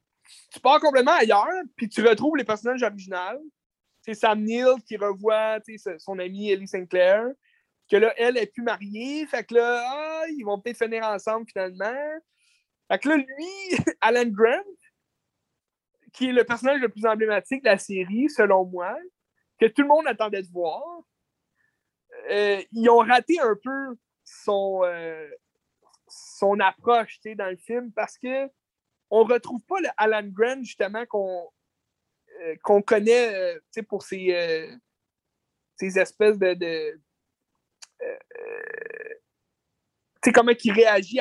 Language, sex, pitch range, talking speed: French, male, 200-275 Hz, 145 wpm